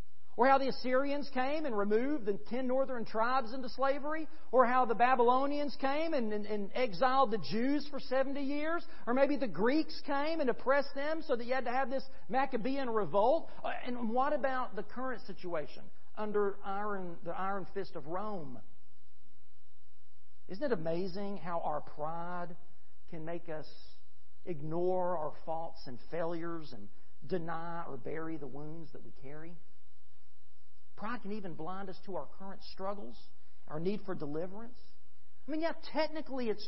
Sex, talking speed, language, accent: male, 160 wpm, English, American